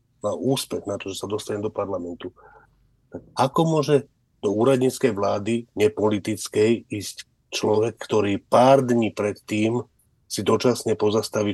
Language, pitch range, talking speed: Slovak, 100-125 Hz, 130 wpm